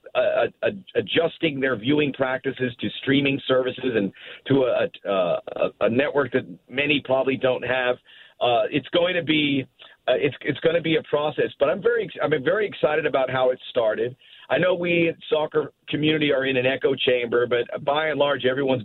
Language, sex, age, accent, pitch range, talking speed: English, male, 50-69, American, 125-155 Hz, 180 wpm